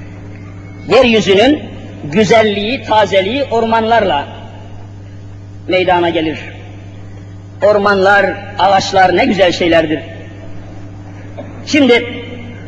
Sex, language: female, Turkish